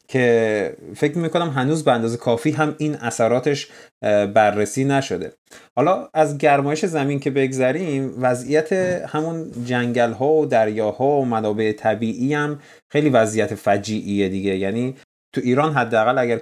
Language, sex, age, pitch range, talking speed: Persian, male, 30-49, 115-150 Hz, 135 wpm